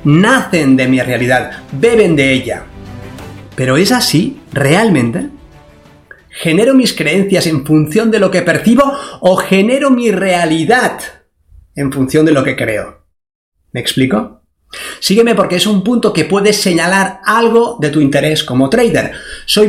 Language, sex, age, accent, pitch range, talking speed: Spanish, male, 30-49, Spanish, 135-195 Hz, 145 wpm